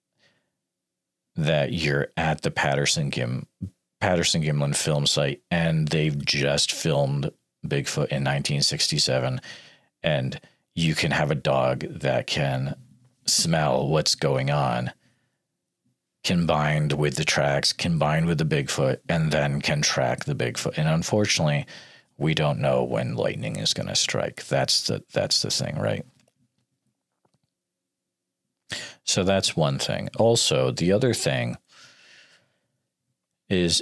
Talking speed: 120 wpm